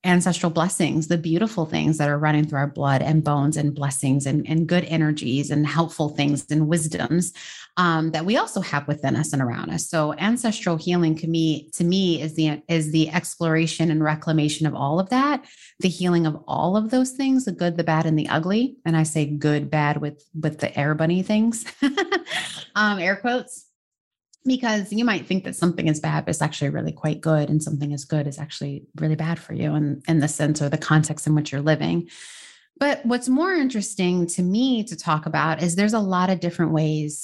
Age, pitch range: 30-49, 155-190 Hz